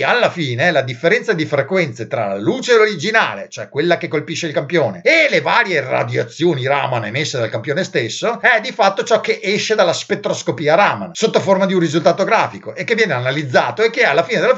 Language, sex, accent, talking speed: Italian, male, native, 200 wpm